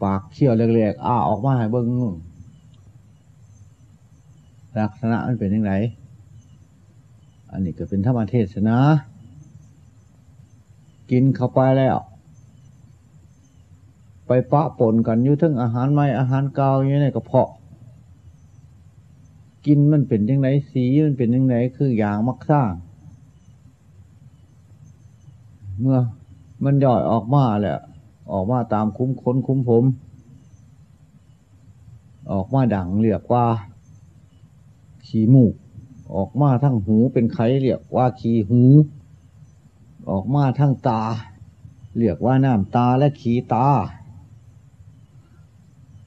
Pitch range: 110-130 Hz